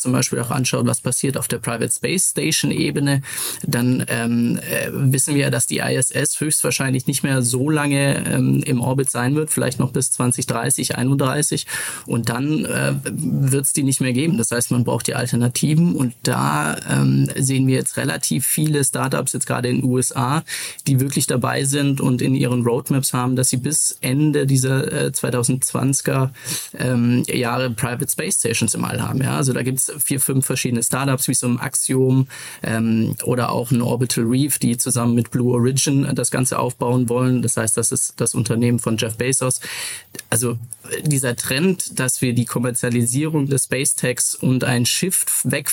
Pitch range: 120-140 Hz